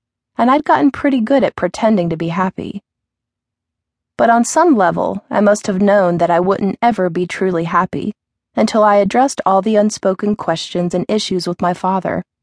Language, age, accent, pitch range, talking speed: English, 30-49, American, 175-220 Hz, 180 wpm